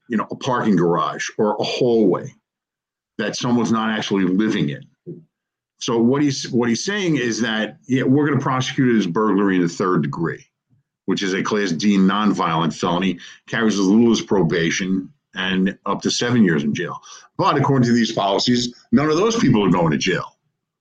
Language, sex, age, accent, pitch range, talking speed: English, male, 50-69, American, 100-125 Hz, 185 wpm